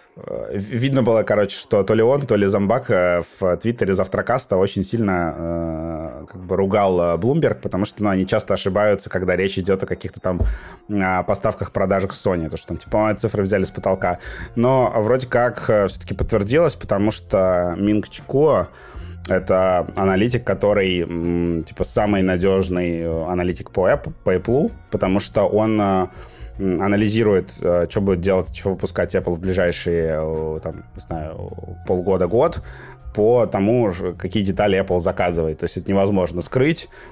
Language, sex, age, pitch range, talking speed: Russian, male, 20-39, 90-105 Hz, 140 wpm